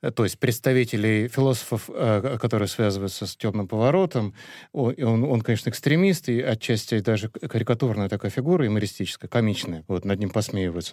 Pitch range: 105-130 Hz